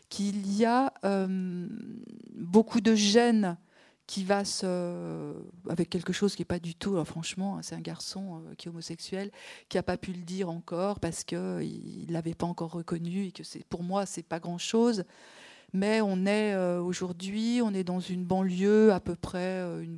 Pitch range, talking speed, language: 180-205 Hz, 200 wpm, French